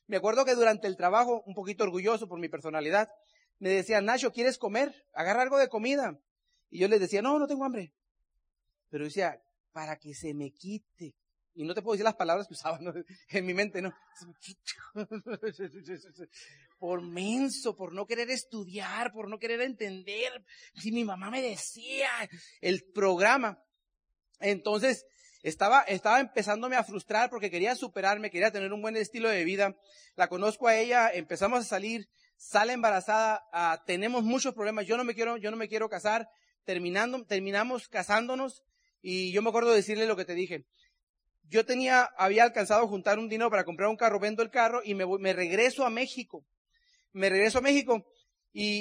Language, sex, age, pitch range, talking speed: Spanish, male, 40-59, 190-235 Hz, 175 wpm